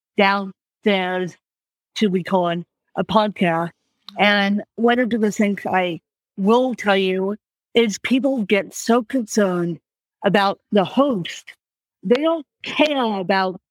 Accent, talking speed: American, 115 wpm